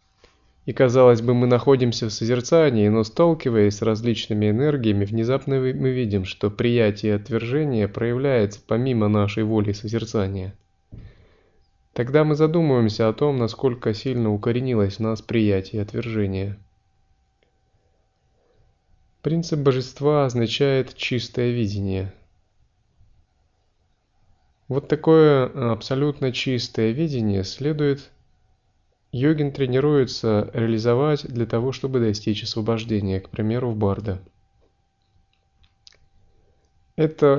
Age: 20-39